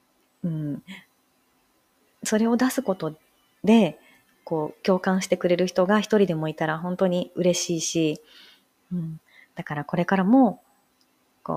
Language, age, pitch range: Japanese, 30-49, 160-205 Hz